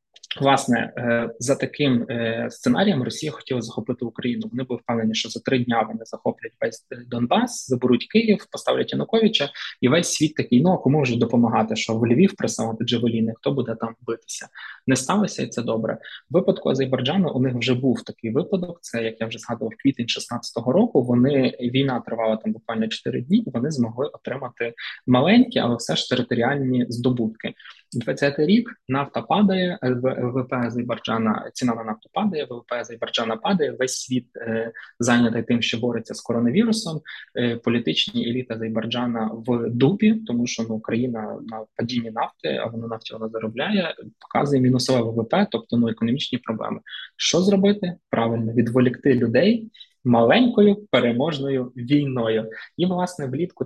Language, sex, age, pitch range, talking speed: Ukrainian, male, 20-39, 115-145 Hz, 150 wpm